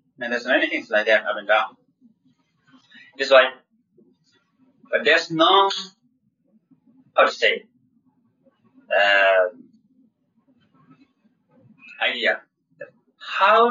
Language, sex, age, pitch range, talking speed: English, male, 30-49, 160-255 Hz, 90 wpm